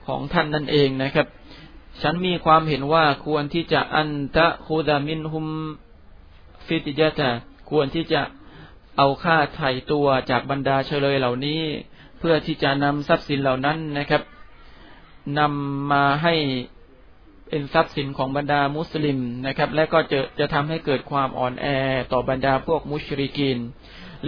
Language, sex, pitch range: Thai, male, 135-155 Hz